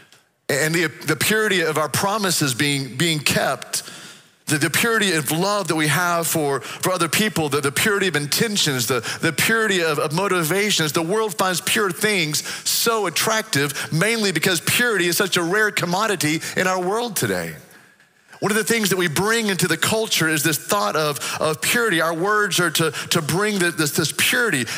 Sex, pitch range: male, 140-195 Hz